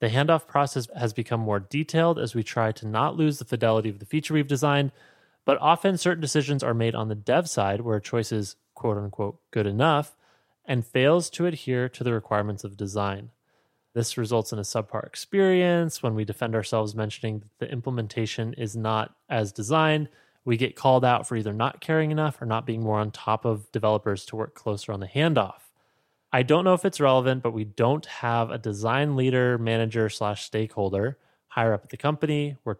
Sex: male